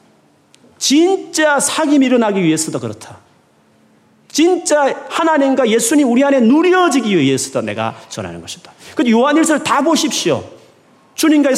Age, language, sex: 40-59, Korean, male